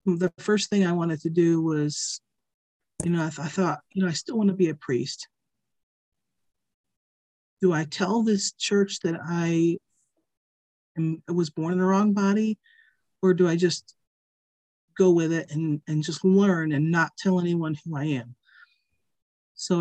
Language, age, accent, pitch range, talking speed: English, 40-59, American, 160-190 Hz, 170 wpm